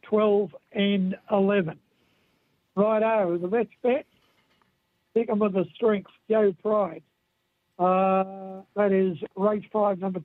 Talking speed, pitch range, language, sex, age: 115 wpm, 185-215 Hz, English, male, 60-79